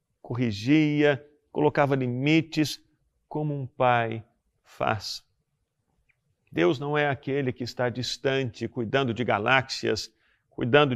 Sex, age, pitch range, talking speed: male, 50-69, 135-185 Hz, 100 wpm